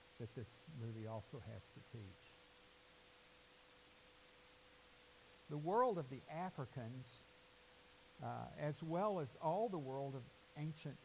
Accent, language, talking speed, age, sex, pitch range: American, English, 115 wpm, 60-79, male, 115-150 Hz